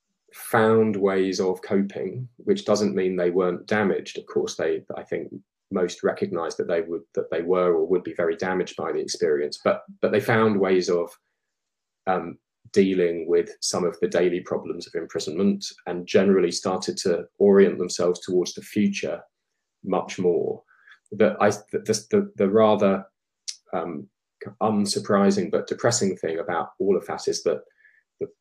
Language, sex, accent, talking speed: English, male, British, 160 wpm